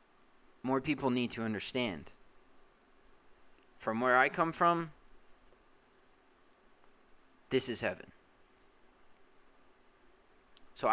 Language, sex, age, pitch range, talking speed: English, male, 20-39, 110-135 Hz, 75 wpm